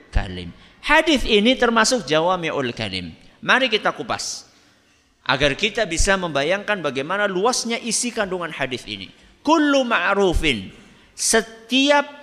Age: 50-69